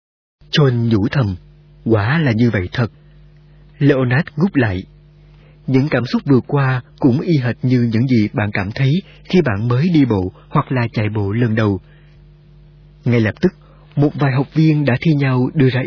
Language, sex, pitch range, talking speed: Vietnamese, male, 120-155 Hz, 180 wpm